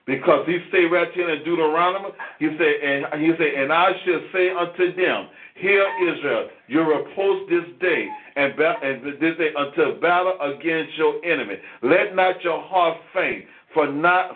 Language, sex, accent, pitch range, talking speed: English, male, American, 160-200 Hz, 170 wpm